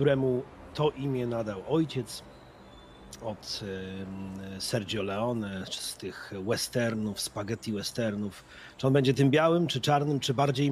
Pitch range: 90-135 Hz